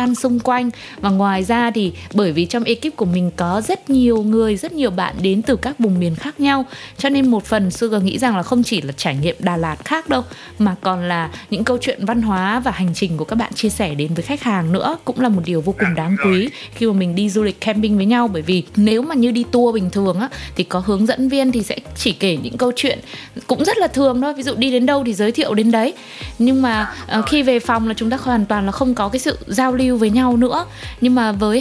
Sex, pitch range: female, 195-255 Hz